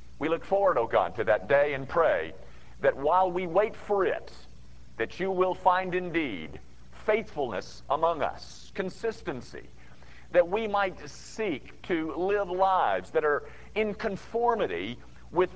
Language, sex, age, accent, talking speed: English, male, 50-69, American, 145 wpm